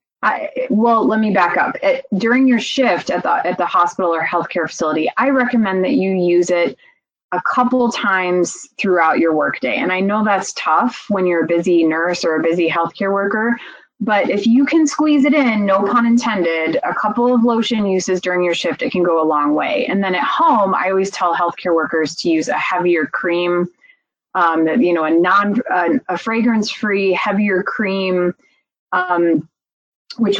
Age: 20-39